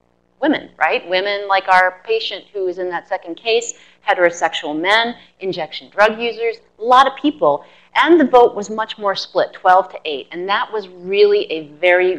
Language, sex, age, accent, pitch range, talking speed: English, female, 30-49, American, 170-220 Hz, 180 wpm